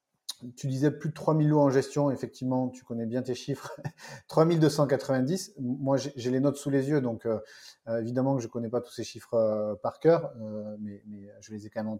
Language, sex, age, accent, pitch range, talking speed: French, male, 30-49, French, 115-145 Hz, 225 wpm